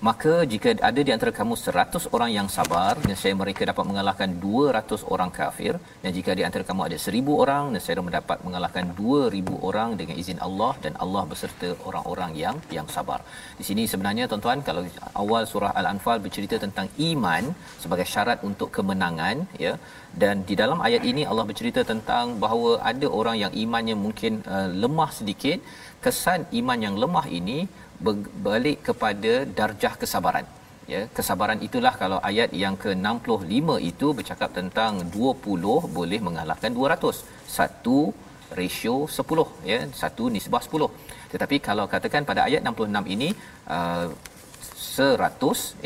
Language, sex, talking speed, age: Malayalam, male, 145 wpm, 40-59